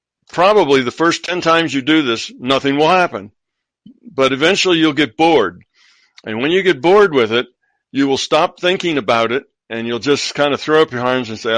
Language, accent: English, American